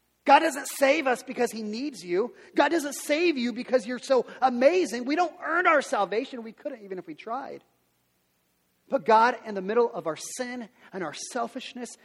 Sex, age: male, 40-59